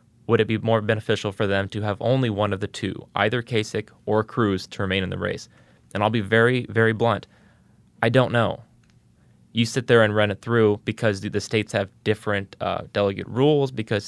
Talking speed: 205 wpm